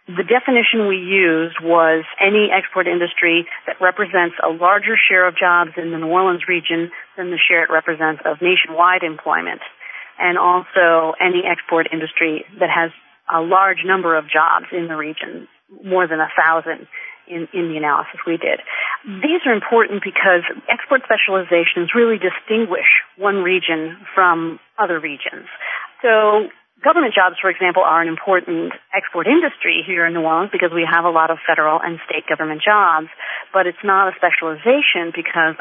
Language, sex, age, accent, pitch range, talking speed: English, female, 40-59, American, 165-195 Hz, 160 wpm